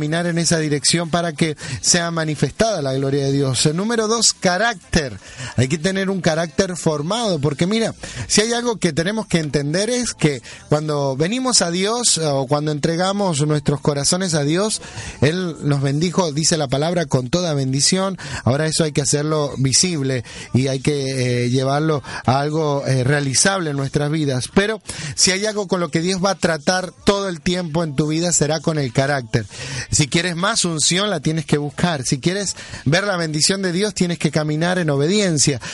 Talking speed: 185 wpm